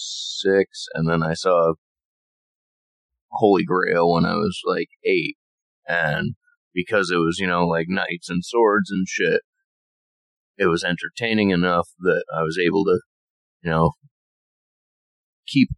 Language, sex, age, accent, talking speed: English, male, 30-49, American, 135 wpm